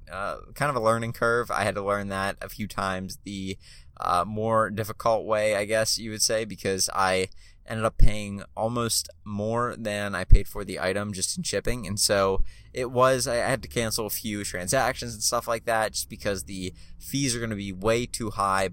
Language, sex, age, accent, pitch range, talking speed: English, male, 20-39, American, 95-115 Hz, 210 wpm